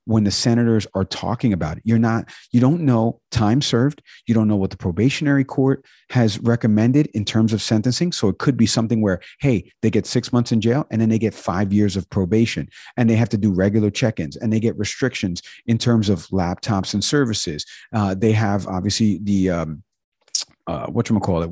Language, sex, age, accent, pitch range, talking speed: English, male, 50-69, American, 100-125 Hz, 205 wpm